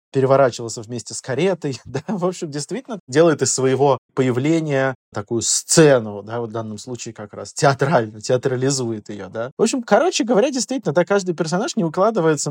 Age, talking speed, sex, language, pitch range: 20-39, 170 wpm, male, Russian, 120-155 Hz